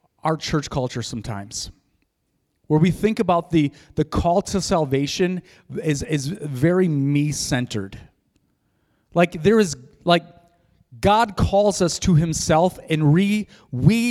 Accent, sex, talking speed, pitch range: American, male, 125 wpm, 145-190 Hz